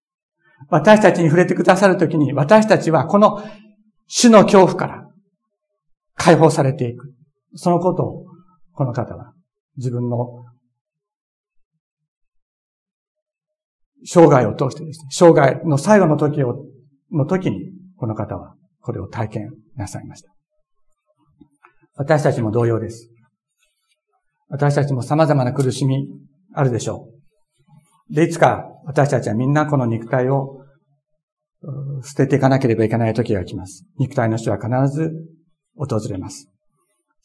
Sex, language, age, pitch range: male, Japanese, 60-79, 130-170 Hz